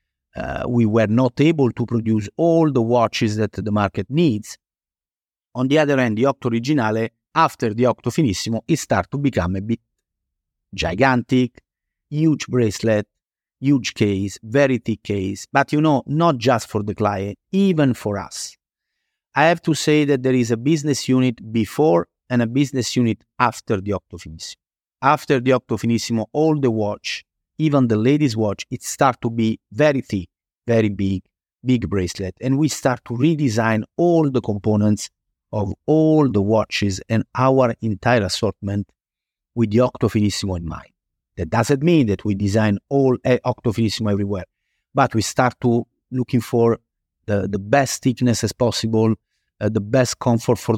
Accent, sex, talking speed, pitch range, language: Italian, male, 165 wpm, 105-135 Hz, English